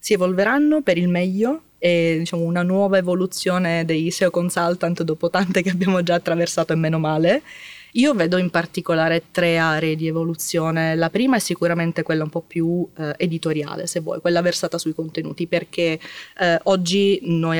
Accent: native